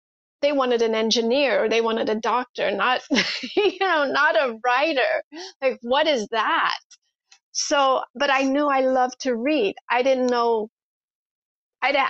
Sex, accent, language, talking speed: female, American, English, 155 wpm